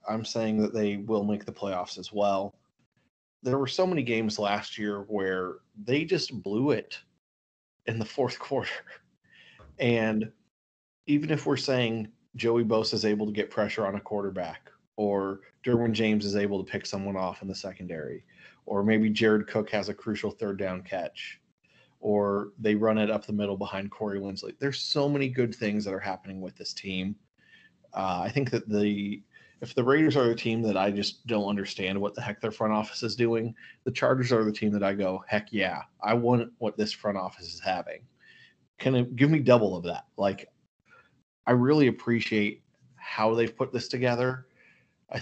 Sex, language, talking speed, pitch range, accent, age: male, English, 190 wpm, 100-115 Hz, American, 30-49